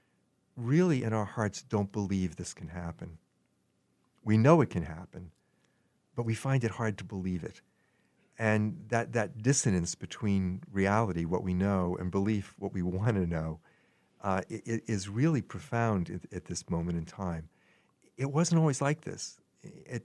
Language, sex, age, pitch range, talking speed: English, male, 50-69, 95-120 Hz, 170 wpm